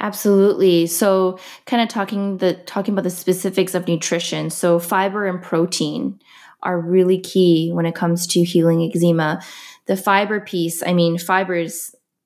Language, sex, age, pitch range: English, female, 20-39, 170-205 Hz